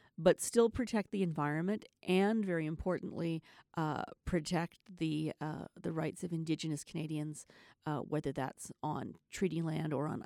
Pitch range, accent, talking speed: 160-205 Hz, American, 145 wpm